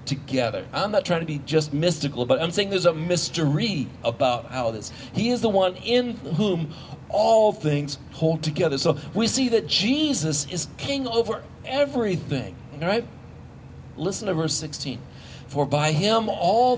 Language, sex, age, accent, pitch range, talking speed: English, male, 50-69, American, 145-225 Hz, 165 wpm